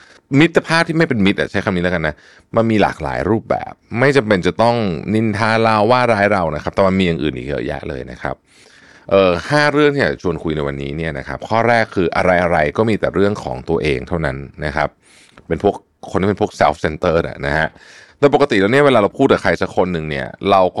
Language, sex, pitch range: Thai, male, 80-120 Hz